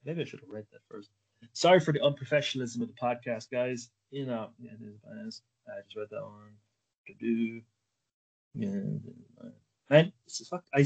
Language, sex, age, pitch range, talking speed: English, male, 30-49, 115-140 Hz, 150 wpm